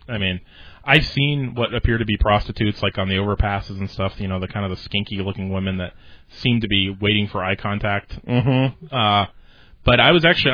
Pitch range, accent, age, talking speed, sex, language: 95-115 Hz, American, 30-49, 210 wpm, male, English